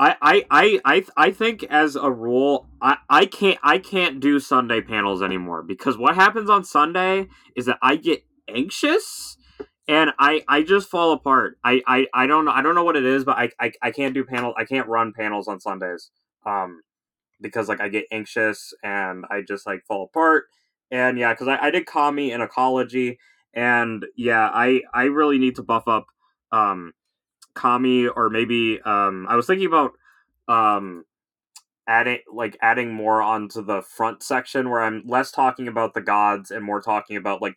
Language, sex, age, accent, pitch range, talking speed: English, male, 20-39, American, 115-155 Hz, 185 wpm